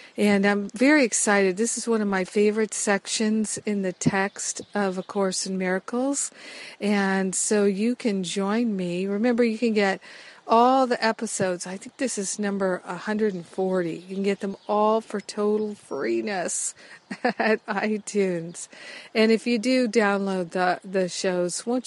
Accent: American